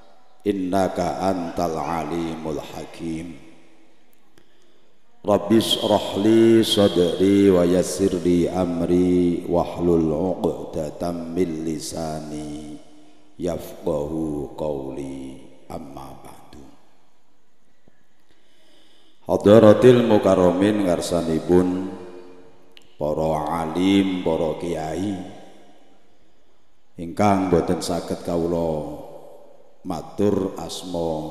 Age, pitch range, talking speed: 50-69, 80-95 Hz, 55 wpm